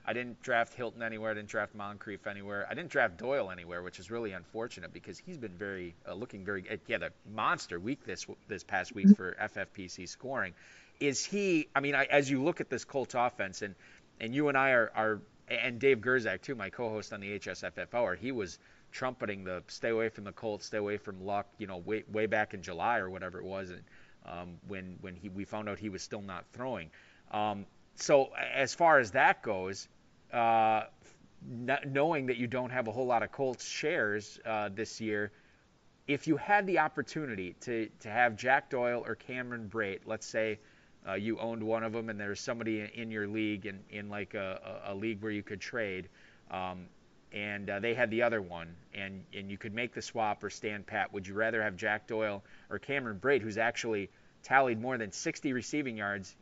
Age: 30-49